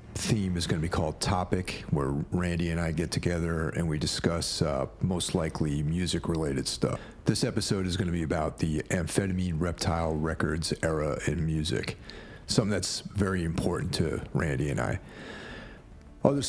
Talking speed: 160 wpm